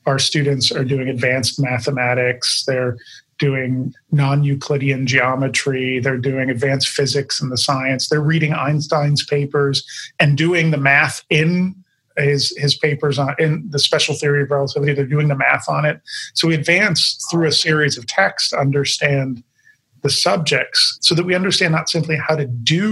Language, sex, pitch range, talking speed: English, male, 135-155 Hz, 165 wpm